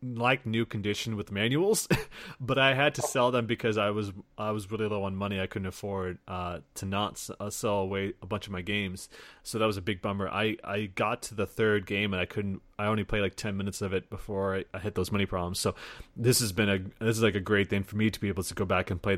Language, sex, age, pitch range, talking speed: English, male, 30-49, 100-125 Hz, 265 wpm